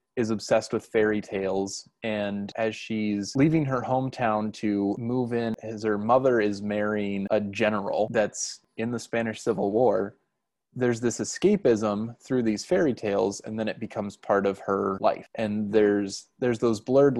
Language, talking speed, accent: English, 165 wpm, American